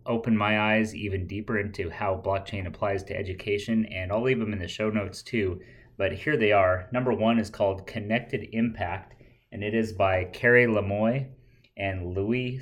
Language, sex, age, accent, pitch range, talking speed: English, male, 30-49, American, 100-120 Hz, 180 wpm